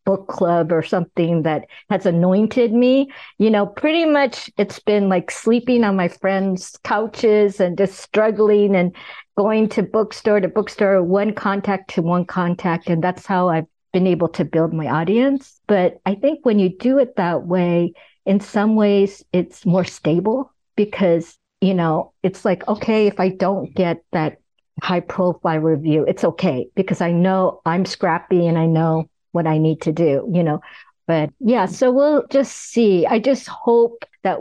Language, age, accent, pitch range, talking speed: English, 60-79, American, 180-235 Hz, 175 wpm